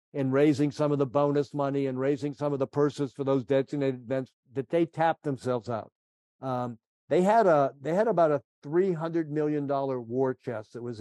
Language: English